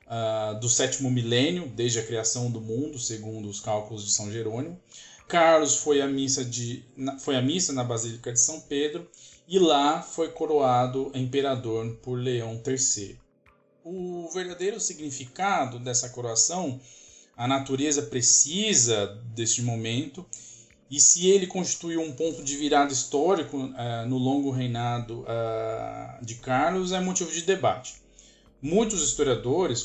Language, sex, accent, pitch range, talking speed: Portuguese, male, Brazilian, 120-145 Hz, 125 wpm